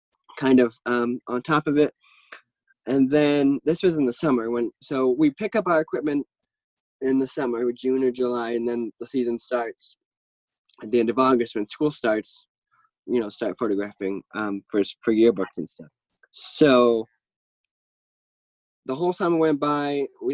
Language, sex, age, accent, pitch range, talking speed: English, male, 10-29, American, 120-145 Hz, 170 wpm